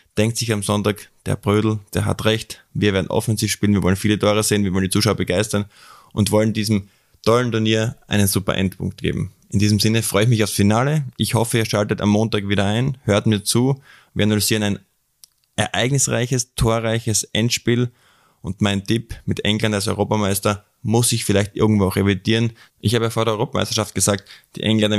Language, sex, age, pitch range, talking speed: German, male, 20-39, 100-110 Hz, 190 wpm